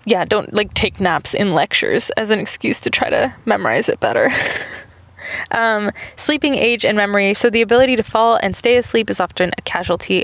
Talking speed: 195 wpm